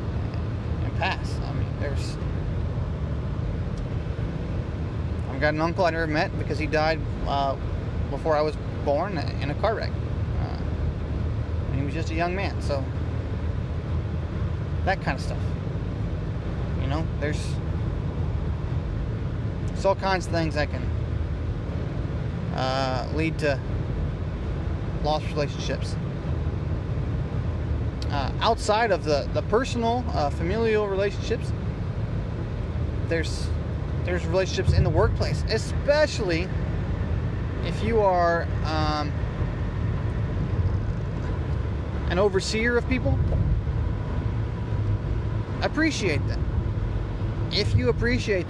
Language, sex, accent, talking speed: English, male, American, 100 wpm